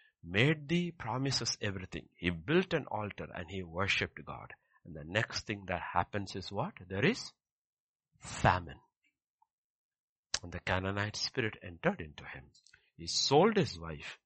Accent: Indian